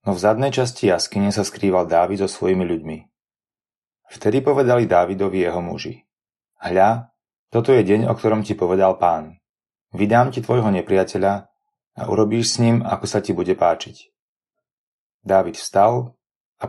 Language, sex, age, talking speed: Slovak, male, 30-49, 145 wpm